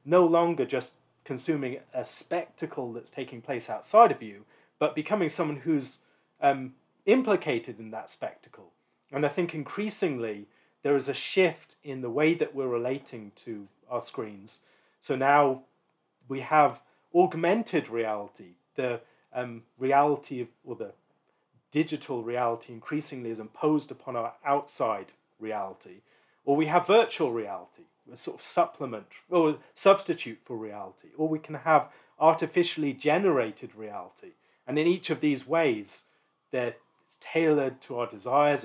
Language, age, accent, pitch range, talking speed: English, 40-59, British, 120-160 Hz, 140 wpm